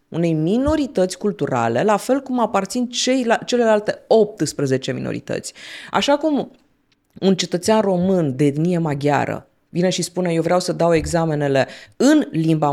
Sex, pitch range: female, 155-225 Hz